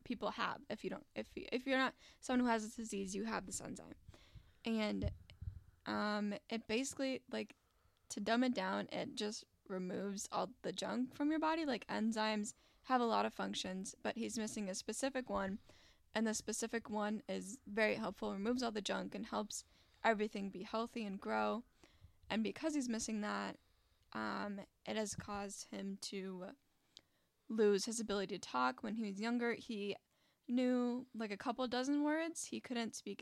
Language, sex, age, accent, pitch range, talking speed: English, female, 10-29, American, 195-235 Hz, 175 wpm